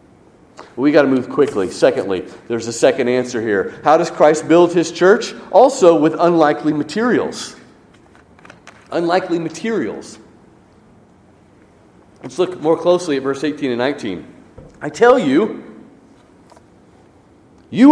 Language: English